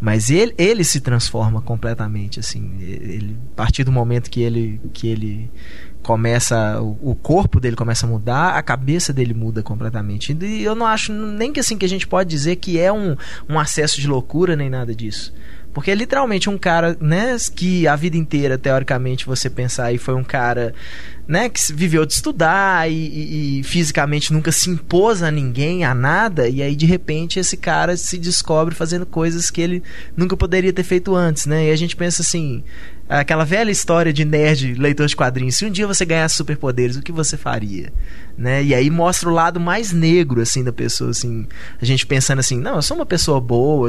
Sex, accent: male, Brazilian